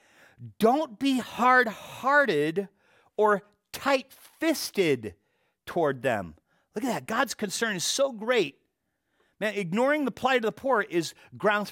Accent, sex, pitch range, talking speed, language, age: American, male, 170-255 Hz, 125 wpm, English, 40-59